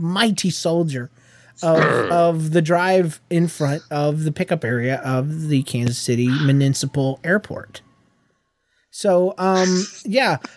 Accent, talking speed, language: American, 120 wpm, English